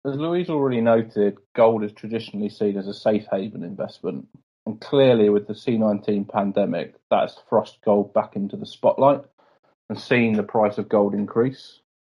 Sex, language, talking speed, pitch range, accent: male, English, 165 wpm, 100-120 Hz, British